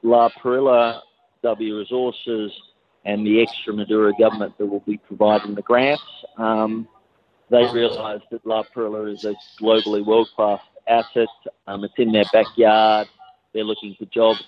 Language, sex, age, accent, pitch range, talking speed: English, male, 40-59, Australian, 100-110 Hz, 145 wpm